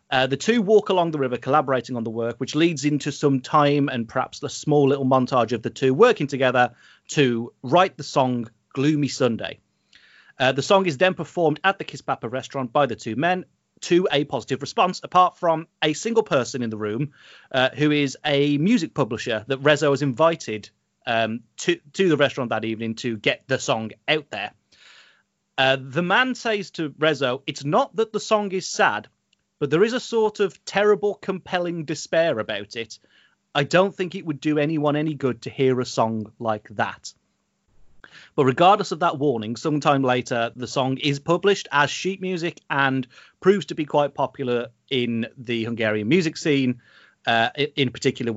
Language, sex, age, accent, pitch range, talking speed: English, male, 30-49, British, 125-165 Hz, 185 wpm